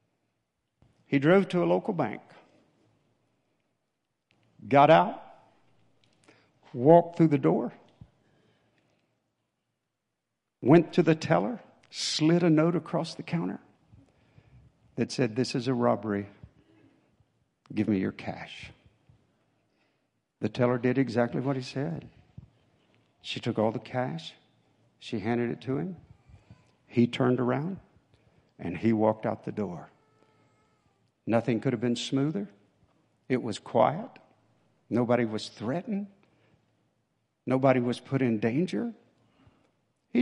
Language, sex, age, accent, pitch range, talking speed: English, male, 60-79, American, 115-170 Hz, 110 wpm